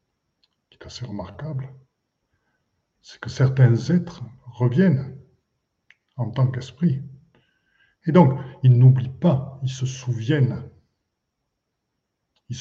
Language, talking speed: French, 90 wpm